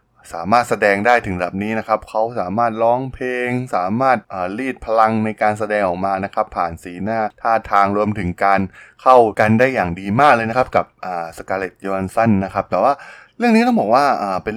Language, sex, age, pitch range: Thai, male, 20-39, 100-125 Hz